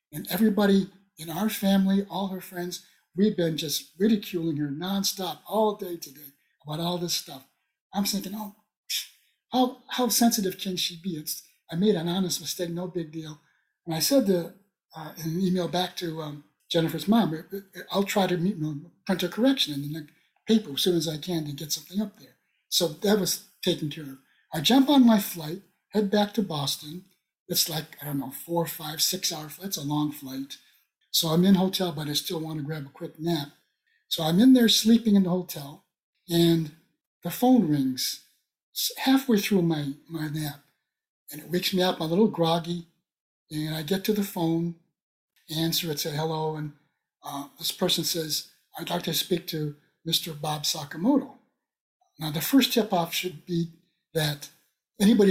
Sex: male